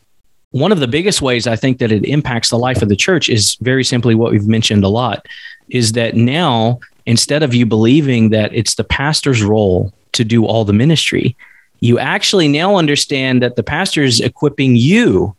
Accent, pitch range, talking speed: American, 115-145 Hz, 195 wpm